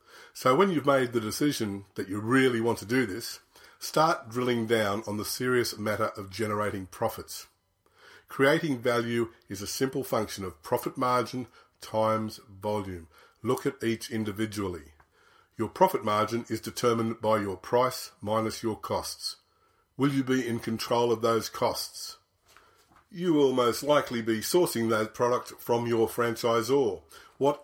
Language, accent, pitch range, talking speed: English, Australian, 110-125 Hz, 150 wpm